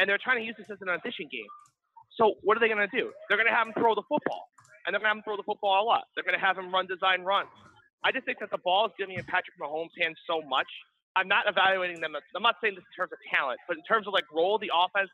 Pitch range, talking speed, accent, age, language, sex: 190-255 Hz, 310 wpm, American, 30-49, English, male